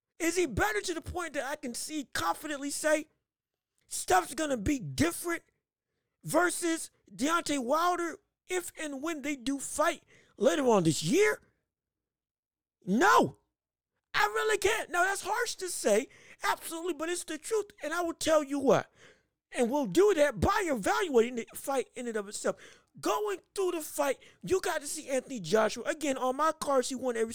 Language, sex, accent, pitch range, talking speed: English, male, American, 255-350 Hz, 175 wpm